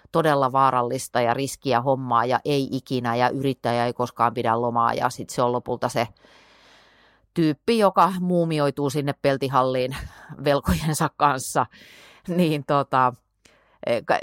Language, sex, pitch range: Finnish, female, 125-175 Hz